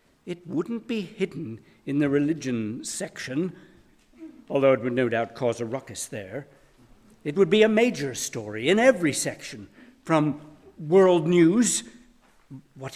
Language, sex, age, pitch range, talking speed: English, male, 60-79, 125-185 Hz, 140 wpm